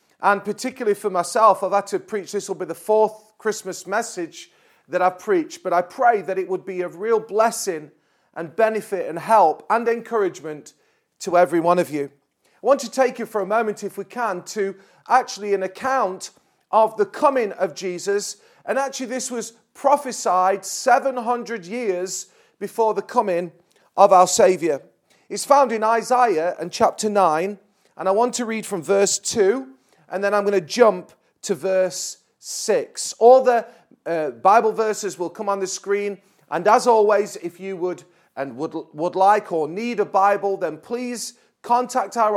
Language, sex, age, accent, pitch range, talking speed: English, male, 40-59, British, 185-240 Hz, 175 wpm